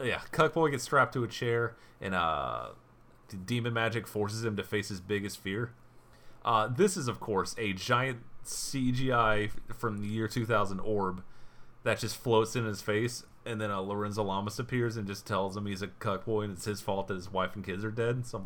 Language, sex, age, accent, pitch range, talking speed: English, male, 30-49, American, 100-125 Hz, 205 wpm